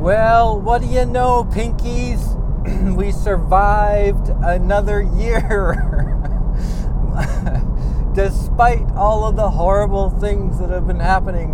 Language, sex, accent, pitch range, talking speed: English, male, American, 125-190 Hz, 105 wpm